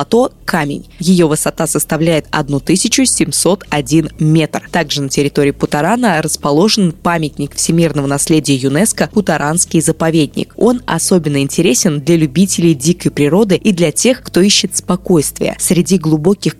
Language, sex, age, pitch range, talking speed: Russian, female, 20-39, 155-200 Hz, 125 wpm